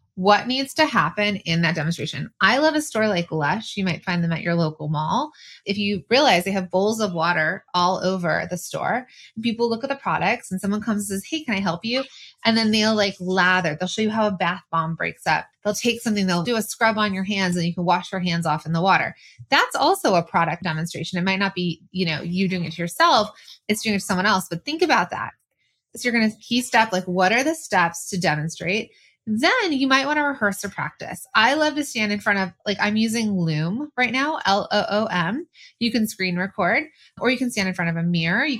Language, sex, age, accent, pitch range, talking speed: English, female, 20-39, American, 175-230 Hz, 245 wpm